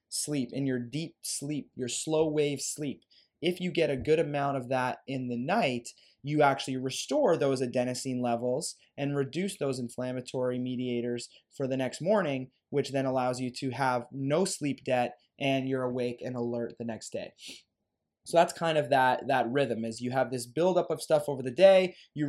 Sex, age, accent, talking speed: male, 20-39, American, 190 wpm